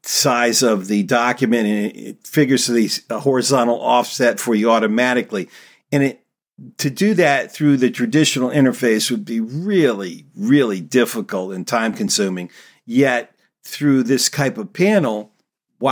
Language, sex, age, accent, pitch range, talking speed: English, male, 50-69, American, 115-140 Hz, 135 wpm